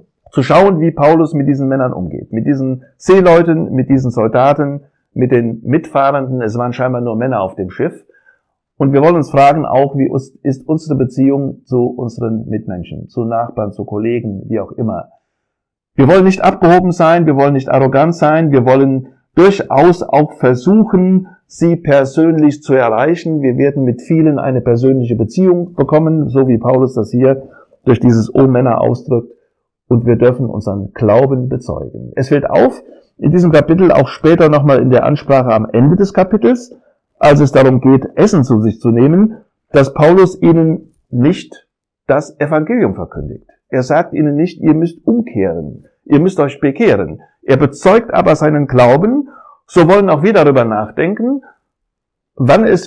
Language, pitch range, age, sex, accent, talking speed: German, 125-165 Hz, 50-69, male, German, 165 wpm